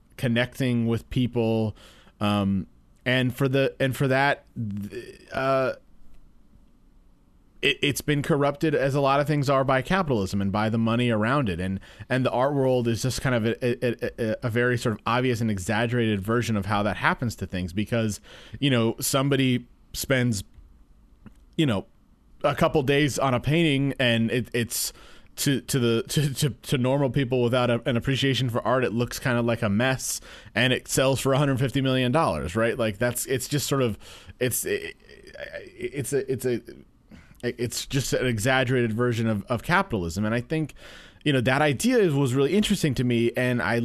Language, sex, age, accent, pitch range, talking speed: English, male, 30-49, American, 115-135 Hz, 185 wpm